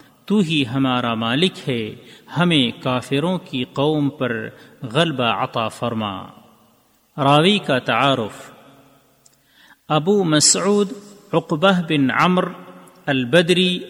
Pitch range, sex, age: 135-175 Hz, male, 40-59